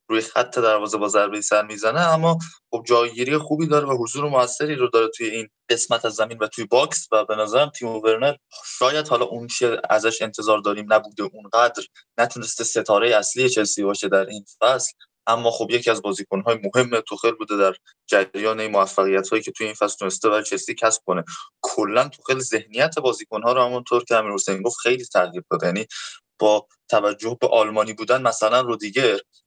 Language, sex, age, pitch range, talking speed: Persian, male, 20-39, 105-125 Hz, 180 wpm